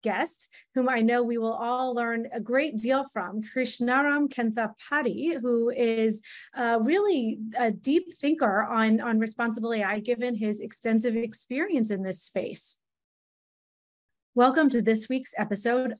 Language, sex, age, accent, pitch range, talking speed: English, female, 30-49, American, 200-240 Hz, 140 wpm